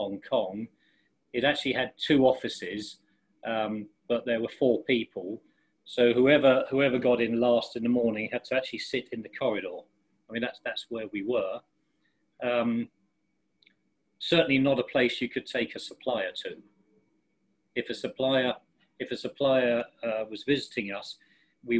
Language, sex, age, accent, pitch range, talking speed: English, male, 40-59, British, 115-135 Hz, 160 wpm